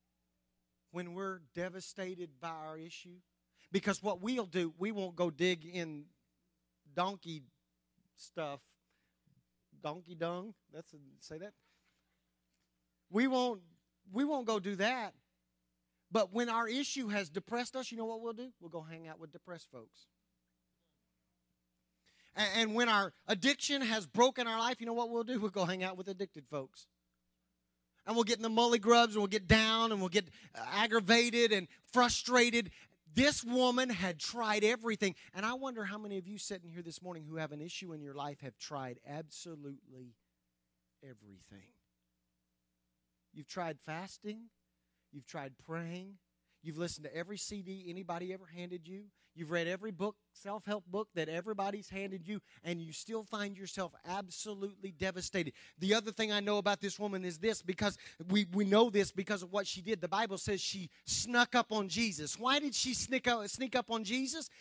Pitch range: 140-215 Hz